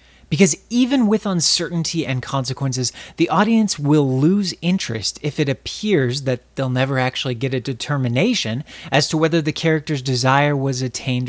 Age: 30-49